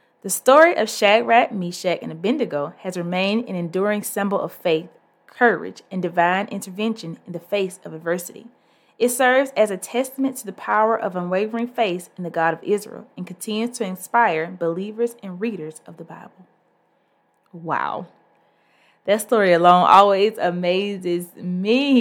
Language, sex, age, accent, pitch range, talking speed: English, female, 20-39, American, 175-235 Hz, 155 wpm